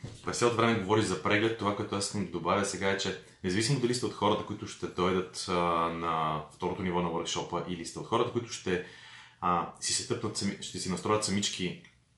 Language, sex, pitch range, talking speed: Bulgarian, male, 95-120 Hz, 205 wpm